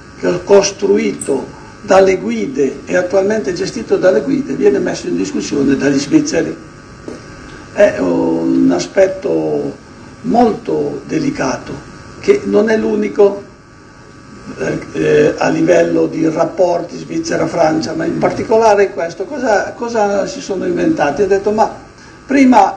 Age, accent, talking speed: 60-79, native, 115 wpm